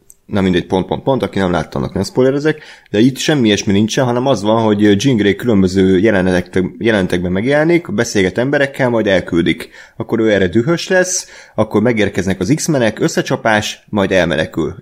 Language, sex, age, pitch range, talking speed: Hungarian, male, 30-49, 95-120 Hz, 160 wpm